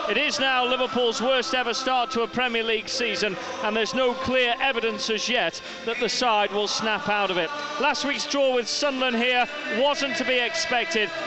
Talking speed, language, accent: 195 wpm, English, British